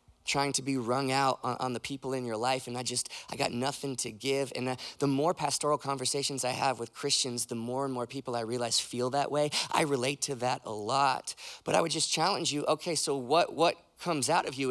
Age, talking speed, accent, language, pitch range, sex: 20-39, 235 wpm, American, English, 115-140 Hz, male